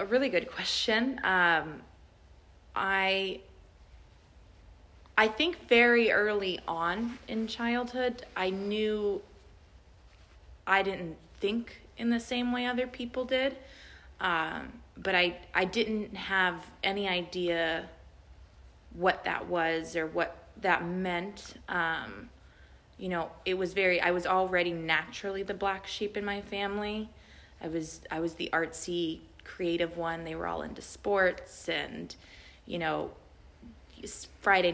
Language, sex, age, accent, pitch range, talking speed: English, female, 20-39, American, 165-205 Hz, 125 wpm